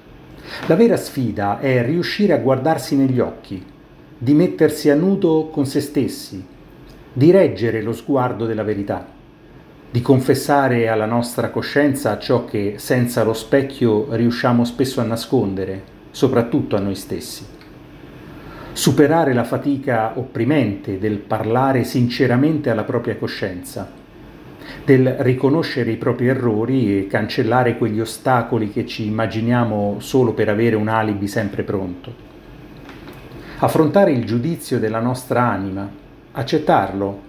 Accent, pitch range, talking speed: native, 110-140 Hz, 120 wpm